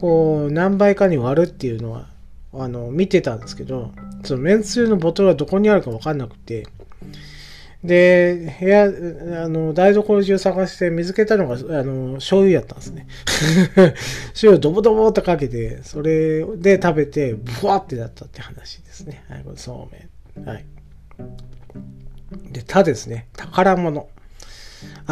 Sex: male